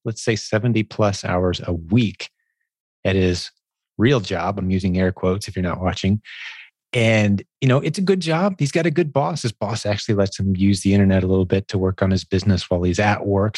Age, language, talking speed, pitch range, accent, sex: 30-49, English, 225 wpm, 95-115 Hz, American, male